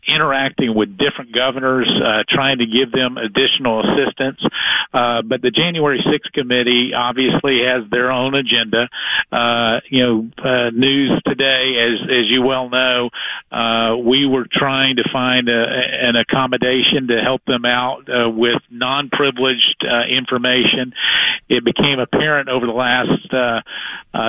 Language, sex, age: English, male, 50-69